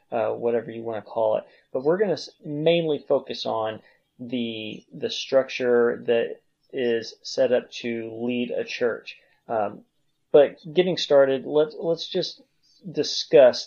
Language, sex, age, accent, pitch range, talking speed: English, male, 30-49, American, 115-135 Hz, 145 wpm